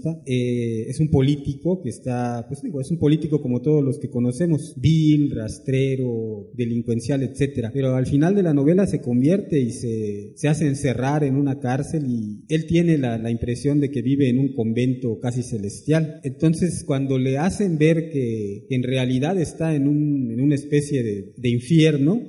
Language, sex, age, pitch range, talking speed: Spanish, male, 30-49, 125-155 Hz, 185 wpm